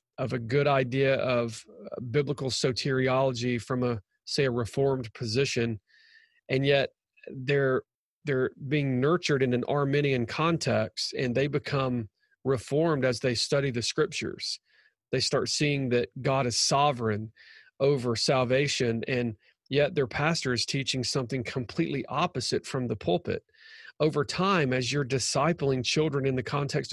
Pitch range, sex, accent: 130-155 Hz, male, American